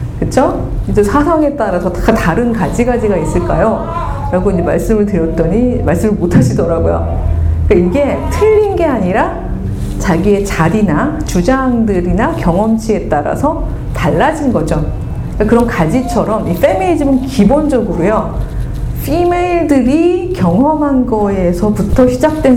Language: Korean